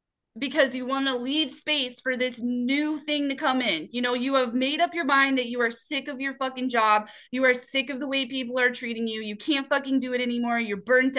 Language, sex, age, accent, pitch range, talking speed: English, female, 20-39, American, 240-290 Hz, 250 wpm